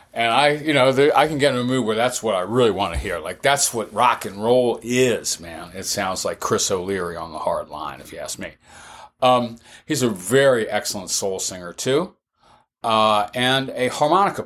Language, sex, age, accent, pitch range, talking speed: English, male, 40-59, American, 110-150 Hz, 210 wpm